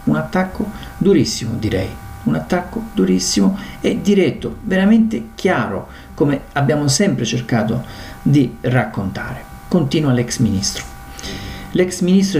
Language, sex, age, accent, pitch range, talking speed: Italian, male, 50-69, native, 115-145 Hz, 105 wpm